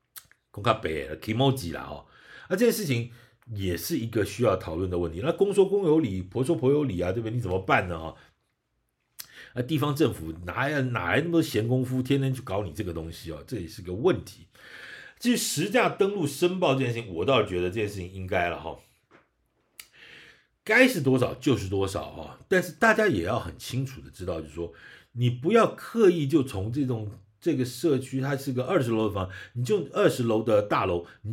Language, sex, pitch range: Chinese, male, 95-140 Hz